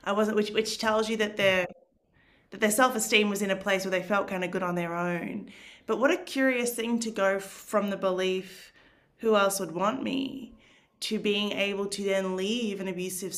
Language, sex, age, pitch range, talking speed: English, female, 20-39, 190-230 Hz, 215 wpm